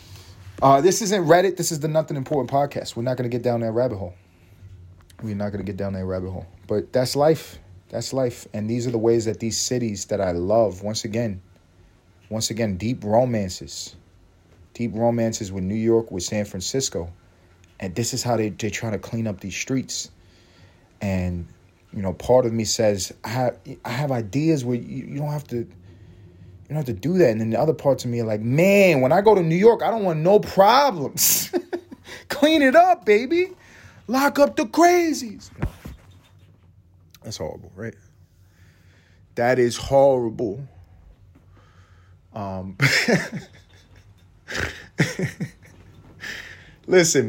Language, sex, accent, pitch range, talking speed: English, male, American, 95-140 Hz, 165 wpm